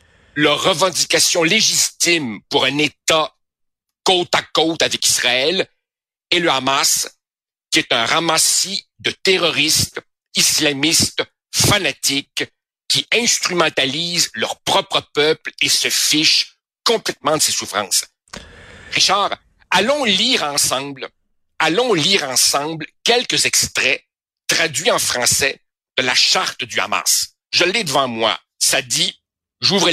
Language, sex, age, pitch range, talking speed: French, male, 60-79, 140-180 Hz, 115 wpm